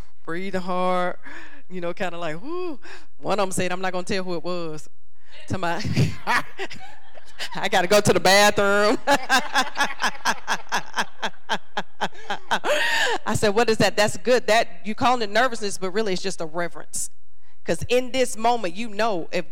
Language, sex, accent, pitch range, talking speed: English, female, American, 140-215 Hz, 160 wpm